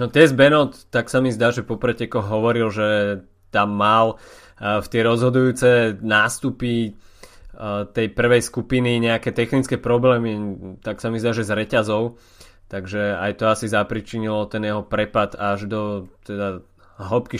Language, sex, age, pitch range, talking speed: Slovak, male, 20-39, 105-120 Hz, 145 wpm